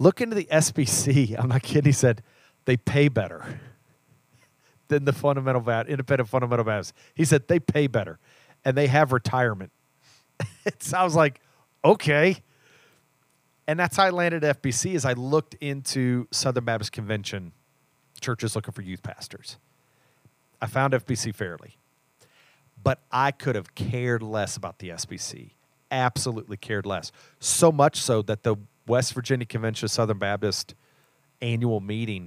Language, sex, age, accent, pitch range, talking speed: English, male, 40-59, American, 110-140 Hz, 150 wpm